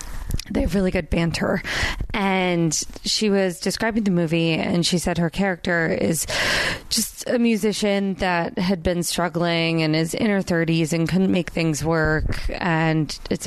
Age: 20-39